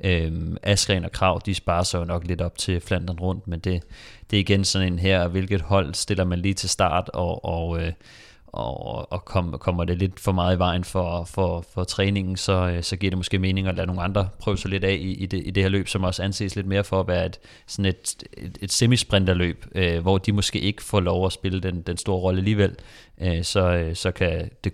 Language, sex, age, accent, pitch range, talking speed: Danish, male, 30-49, native, 90-100 Hz, 240 wpm